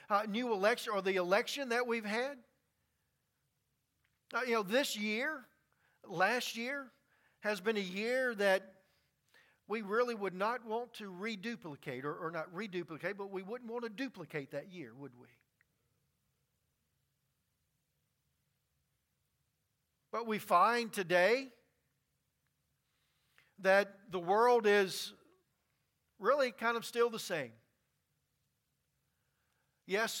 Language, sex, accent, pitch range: English, male, American, 175-225 Hz